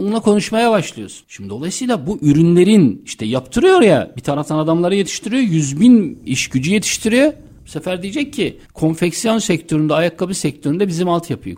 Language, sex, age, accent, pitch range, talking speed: Turkish, male, 60-79, native, 120-175 Hz, 150 wpm